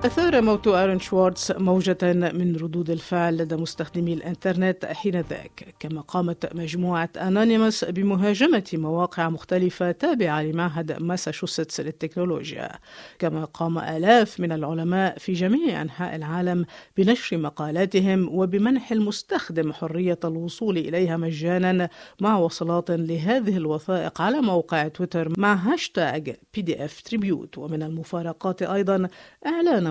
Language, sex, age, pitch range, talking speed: Arabic, female, 50-69, 160-190 Hz, 110 wpm